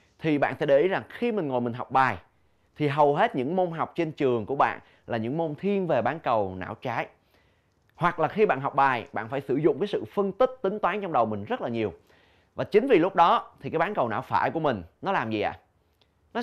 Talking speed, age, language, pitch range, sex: 260 wpm, 20-39, Vietnamese, 115-175 Hz, male